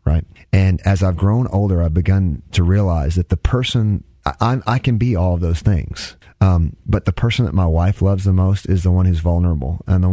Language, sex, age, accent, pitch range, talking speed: English, male, 30-49, American, 85-95 Hz, 230 wpm